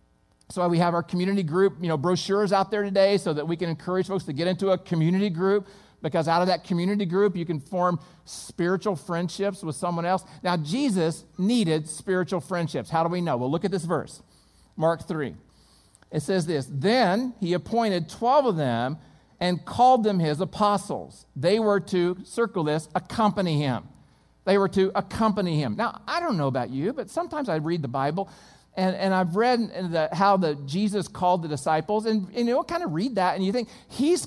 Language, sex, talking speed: English, male, 195 wpm